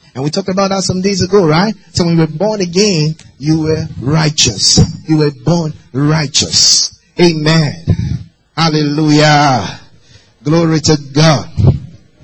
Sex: male